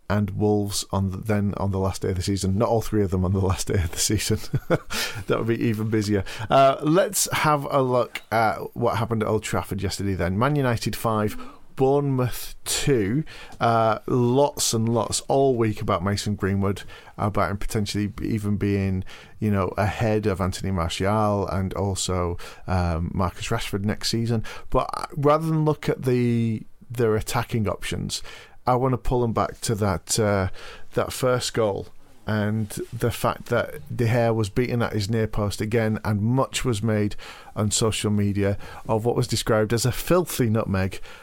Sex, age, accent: male, 40-59, British